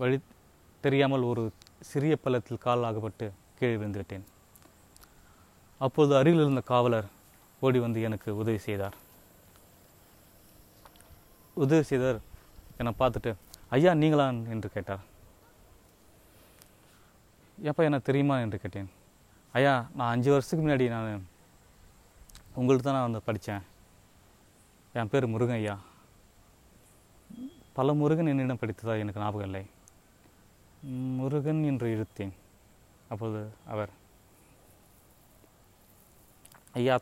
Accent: native